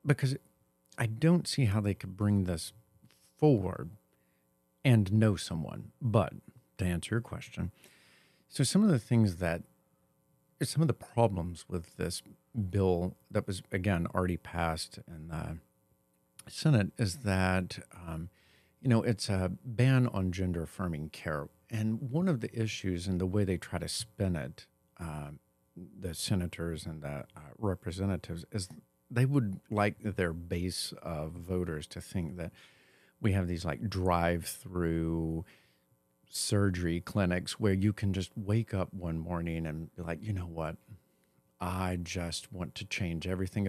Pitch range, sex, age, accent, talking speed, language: 80-110 Hz, male, 50-69, American, 150 wpm, English